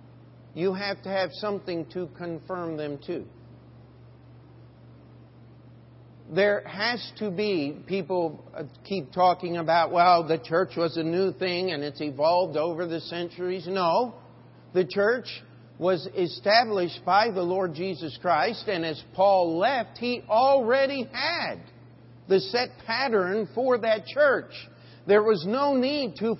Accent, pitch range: American, 175-250 Hz